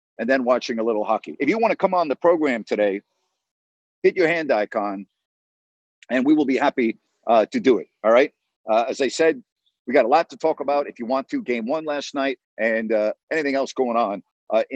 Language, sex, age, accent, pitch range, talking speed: English, male, 50-69, American, 120-155 Hz, 230 wpm